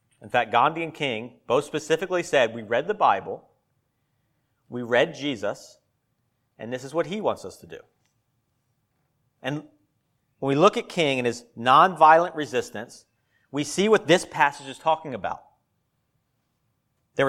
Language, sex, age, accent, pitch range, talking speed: English, male, 40-59, American, 120-150 Hz, 150 wpm